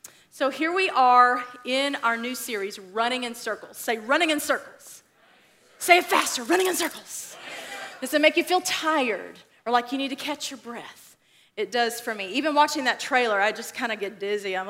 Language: English